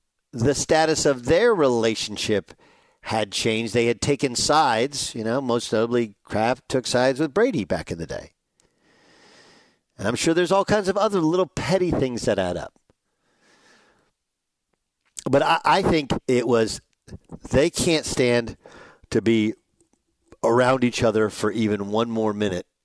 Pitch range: 105-145 Hz